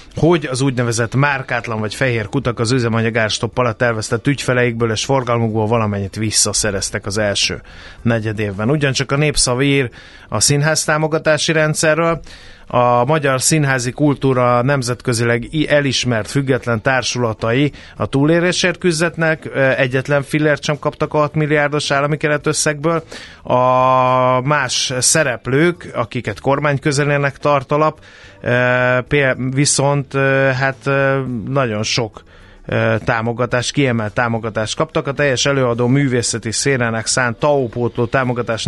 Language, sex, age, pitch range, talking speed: Hungarian, male, 30-49, 115-140 Hz, 105 wpm